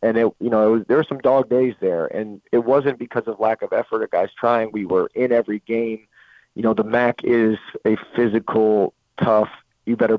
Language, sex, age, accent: English, male, 40-59, American